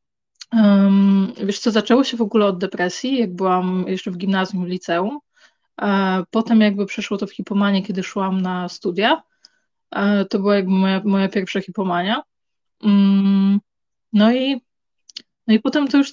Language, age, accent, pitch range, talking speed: Polish, 20-39, native, 195-215 Hz, 145 wpm